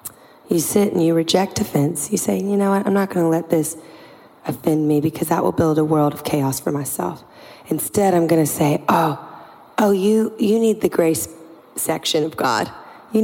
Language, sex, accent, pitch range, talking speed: English, female, American, 155-195 Hz, 205 wpm